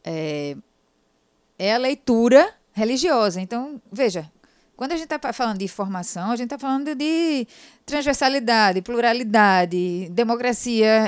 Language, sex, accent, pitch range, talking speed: Portuguese, female, Brazilian, 180-255 Hz, 120 wpm